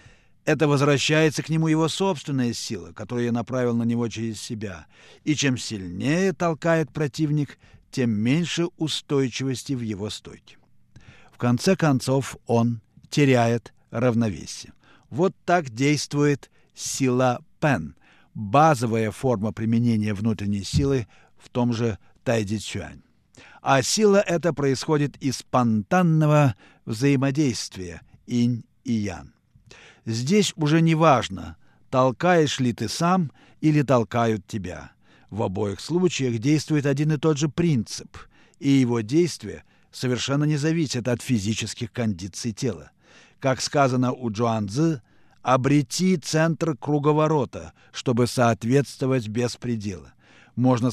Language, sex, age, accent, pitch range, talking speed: Russian, male, 50-69, native, 115-150 Hz, 115 wpm